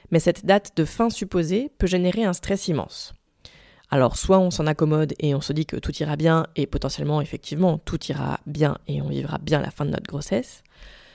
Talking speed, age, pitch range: 210 wpm, 20-39, 160-210 Hz